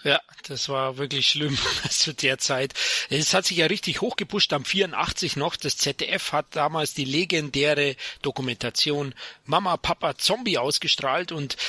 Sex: male